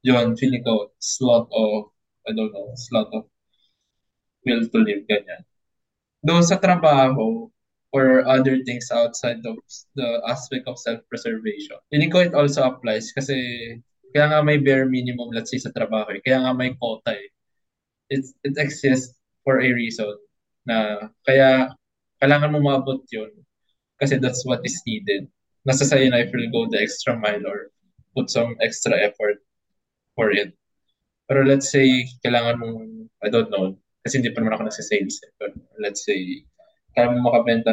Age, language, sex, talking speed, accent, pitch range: 20-39, Filipino, male, 155 wpm, native, 110-140 Hz